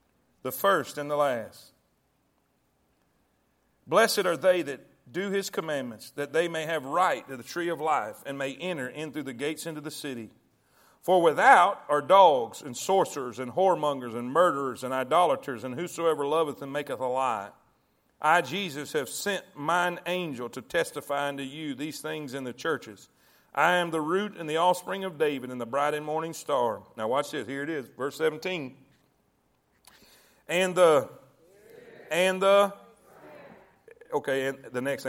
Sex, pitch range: male, 145-195 Hz